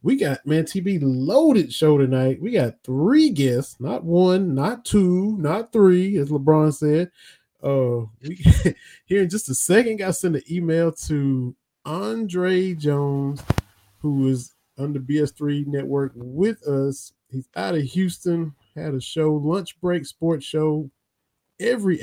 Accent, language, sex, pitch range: American, English, male, 130-165 Hz